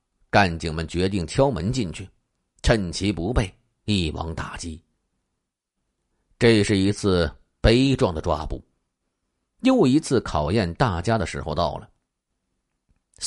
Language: Chinese